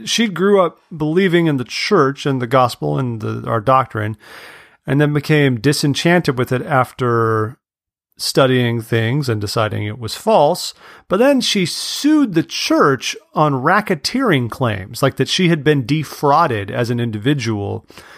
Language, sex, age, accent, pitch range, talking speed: English, male, 40-59, American, 110-145 Hz, 150 wpm